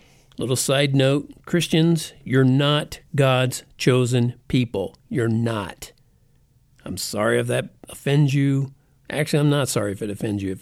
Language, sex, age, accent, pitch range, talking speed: English, male, 50-69, American, 130-185 Hz, 145 wpm